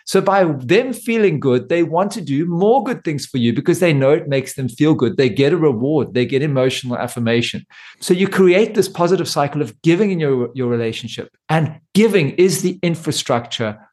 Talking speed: 205 wpm